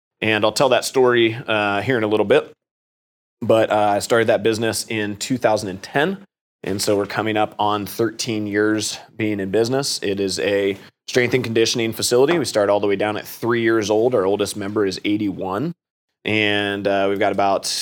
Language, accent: English, American